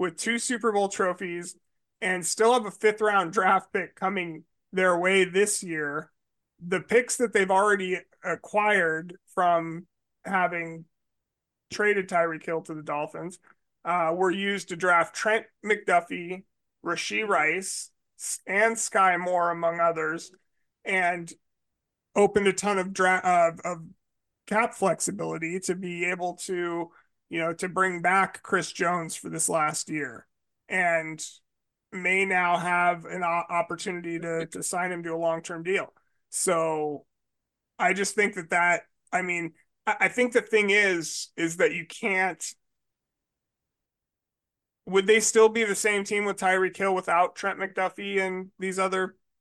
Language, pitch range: English, 165-195 Hz